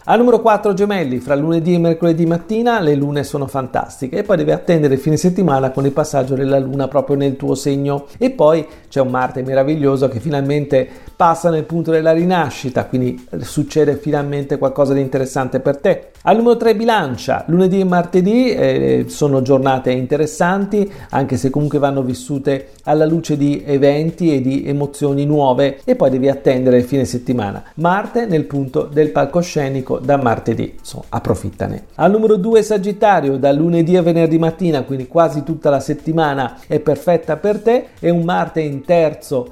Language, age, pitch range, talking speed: Italian, 40-59, 140-175 Hz, 170 wpm